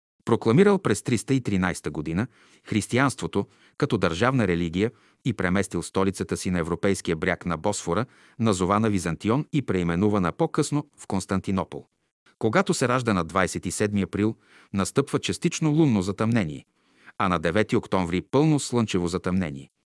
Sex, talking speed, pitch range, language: male, 125 wpm, 95-125 Hz, Bulgarian